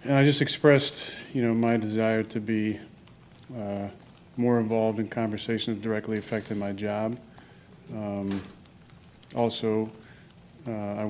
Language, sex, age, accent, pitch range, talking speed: English, male, 40-59, American, 110-115 Hz, 130 wpm